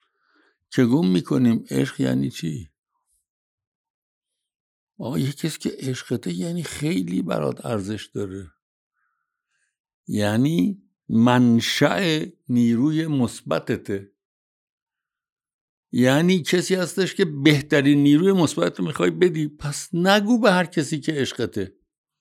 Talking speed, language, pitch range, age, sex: 95 wpm, Persian, 105-170 Hz, 60-79, male